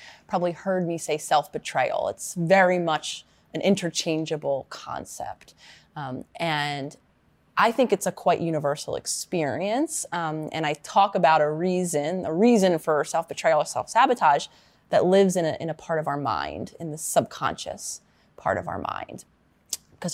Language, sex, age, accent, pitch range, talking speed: English, female, 20-39, American, 155-195 Hz, 150 wpm